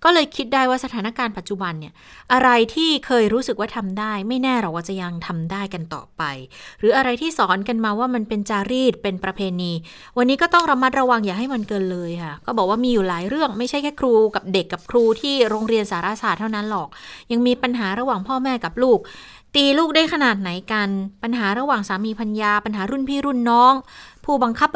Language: Thai